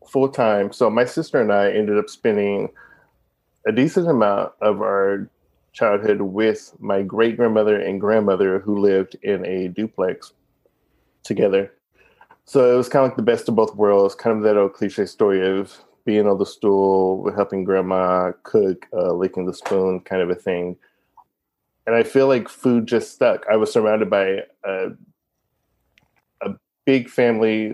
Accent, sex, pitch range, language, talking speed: American, male, 95-110 Hz, English, 160 wpm